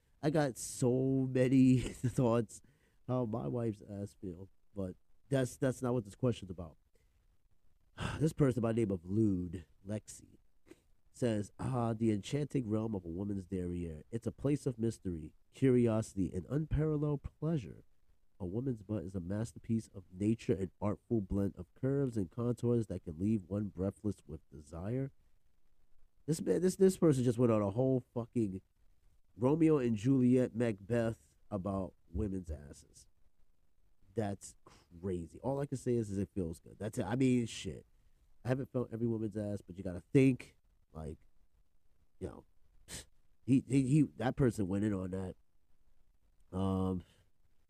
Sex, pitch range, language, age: male, 90-125 Hz, English, 30-49